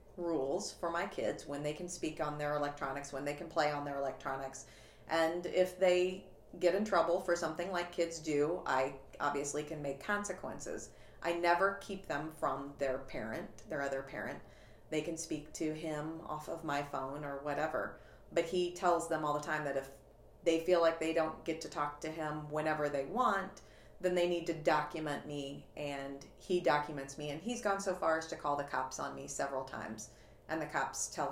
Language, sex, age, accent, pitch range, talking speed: English, female, 40-59, American, 135-170 Hz, 200 wpm